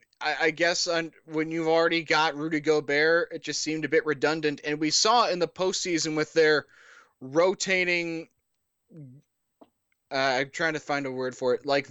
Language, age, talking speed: English, 20-39, 155 wpm